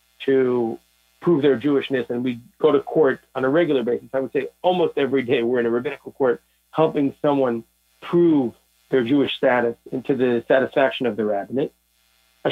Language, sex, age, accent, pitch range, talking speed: English, male, 50-69, American, 115-150 Hz, 175 wpm